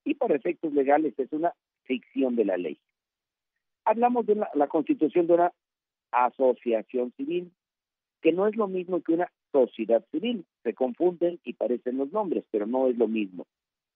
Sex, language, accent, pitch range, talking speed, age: male, Spanish, Mexican, 140-210 Hz, 165 wpm, 50-69